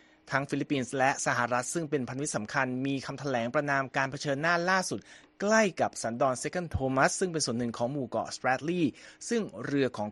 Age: 30-49